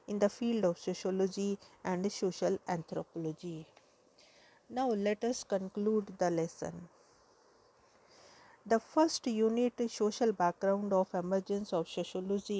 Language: English